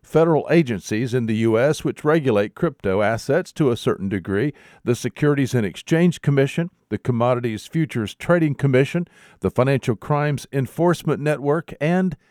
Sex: male